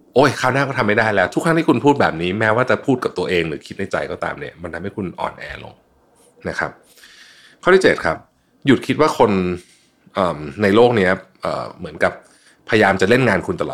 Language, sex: Thai, male